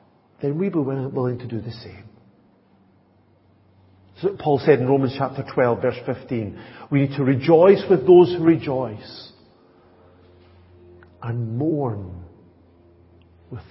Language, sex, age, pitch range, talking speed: English, male, 50-69, 100-140 Hz, 125 wpm